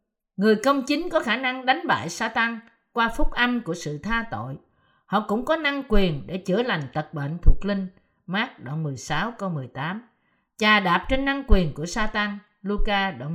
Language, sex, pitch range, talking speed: Vietnamese, female, 160-245 Hz, 200 wpm